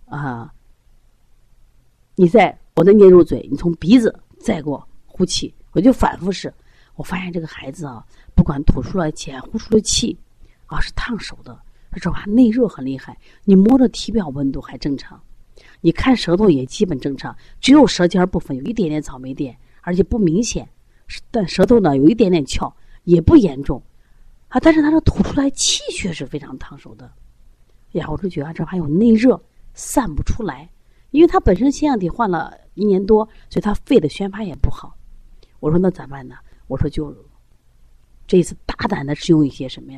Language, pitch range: Chinese, 140-195 Hz